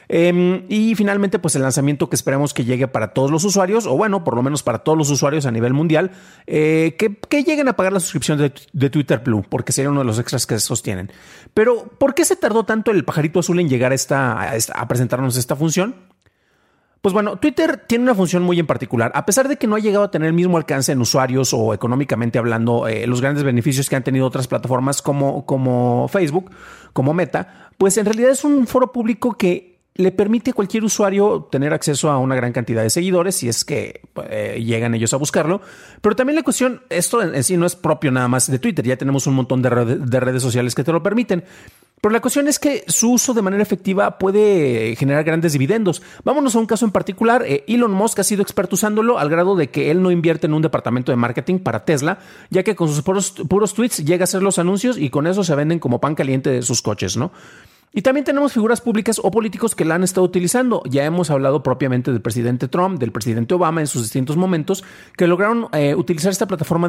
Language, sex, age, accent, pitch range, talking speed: Spanish, male, 40-59, Mexican, 130-205 Hz, 230 wpm